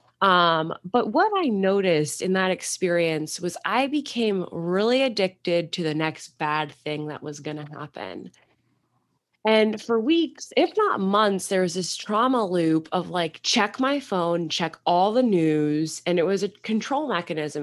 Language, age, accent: English, 20-39, American